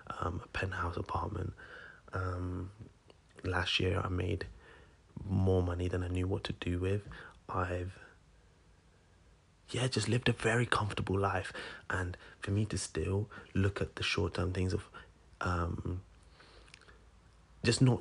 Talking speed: 135 wpm